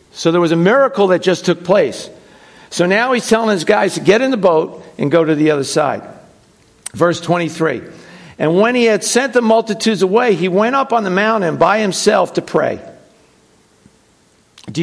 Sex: male